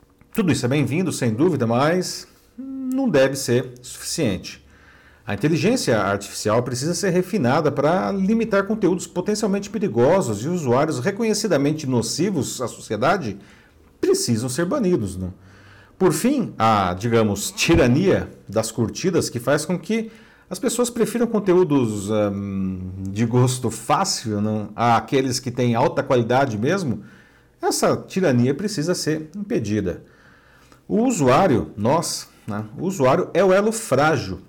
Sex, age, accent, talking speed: male, 50-69, Brazilian, 120 wpm